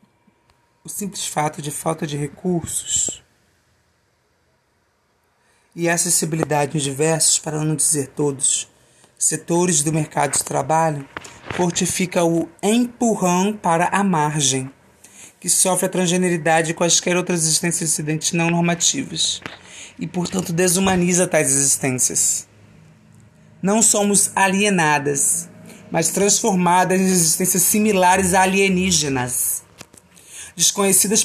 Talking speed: 105 wpm